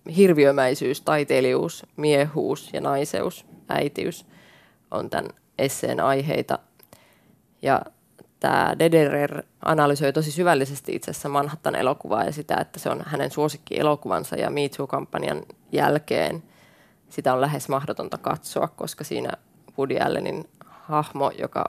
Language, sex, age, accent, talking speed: Finnish, female, 20-39, native, 110 wpm